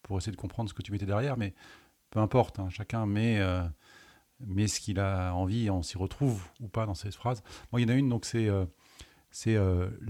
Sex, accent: male, French